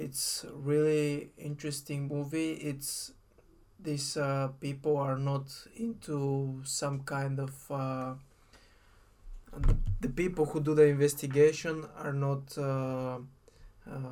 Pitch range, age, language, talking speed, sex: 130-145 Hz, 20-39, English, 110 wpm, male